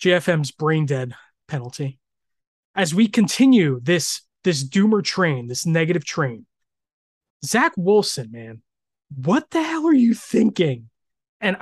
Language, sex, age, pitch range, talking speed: English, male, 20-39, 145-190 Hz, 120 wpm